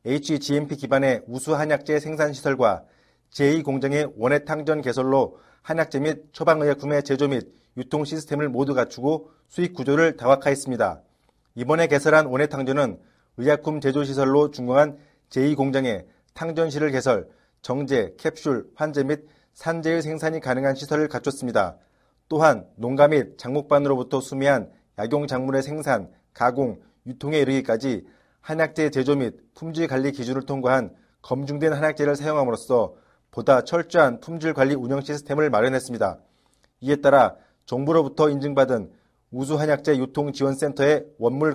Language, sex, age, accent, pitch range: Korean, male, 40-59, native, 135-155 Hz